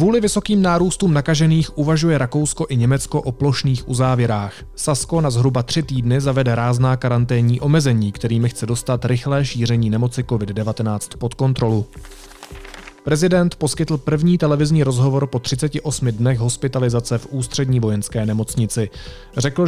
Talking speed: 130 wpm